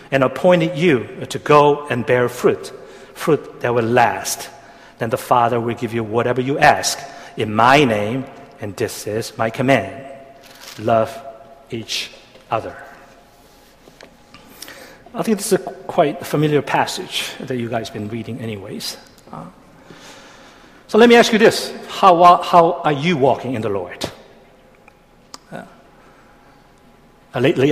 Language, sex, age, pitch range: Korean, male, 60-79, 125-140 Hz